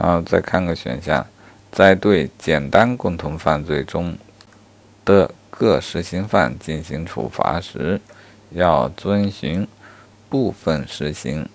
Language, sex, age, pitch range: Chinese, male, 50-69, 85-100 Hz